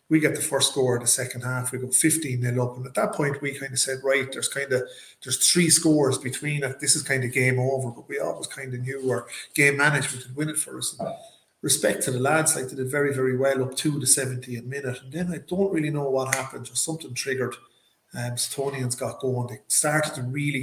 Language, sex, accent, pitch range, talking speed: English, male, Irish, 125-145 Hz, 255 wpm